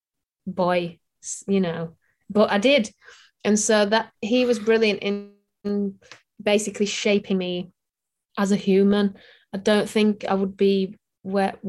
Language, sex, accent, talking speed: English, female, British, 135 wpm